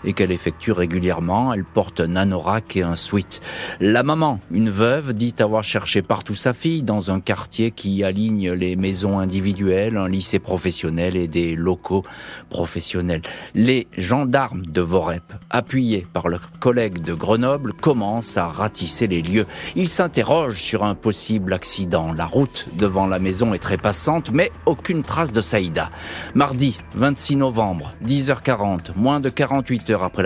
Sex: male